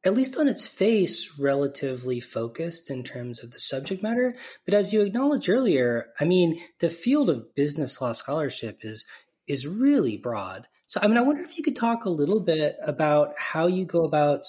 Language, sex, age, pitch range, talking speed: English, male, 30-49, 125-180 Hz, 195 wpm